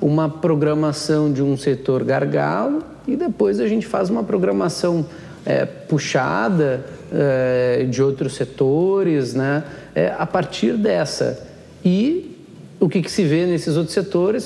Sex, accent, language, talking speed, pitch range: male, Brazilian, Portuguese, 135 wpm, 145-180 Hz